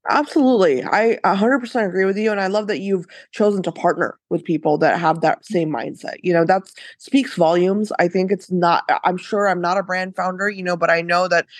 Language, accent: English, American